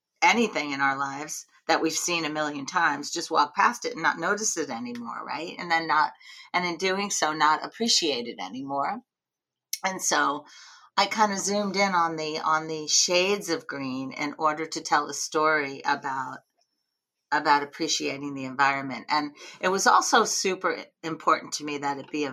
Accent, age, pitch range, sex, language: American, 40-59, 145-175 Hz, female, Chinese